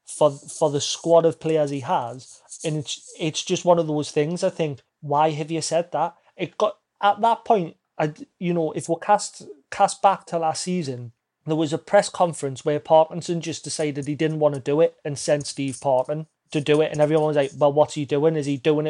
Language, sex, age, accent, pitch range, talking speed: English, male, 30-49, British, 150-185 Hz, 230 wpm